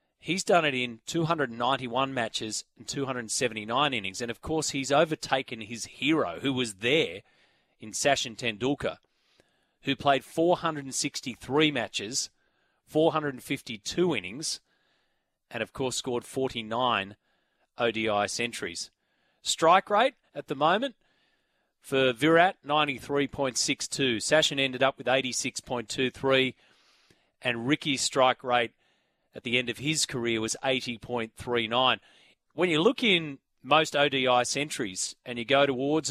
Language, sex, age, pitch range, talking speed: English, male, 30-49, 120-145 Hz, 120 wpm